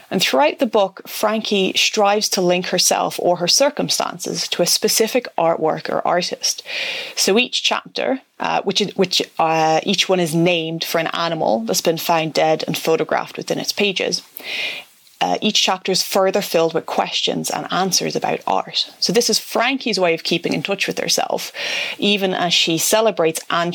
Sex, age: female, 30-49